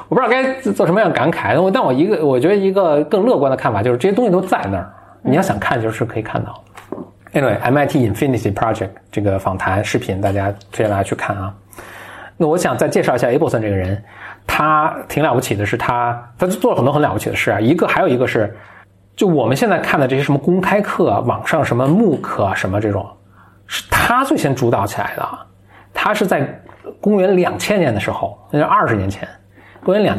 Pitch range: 100-155 Hz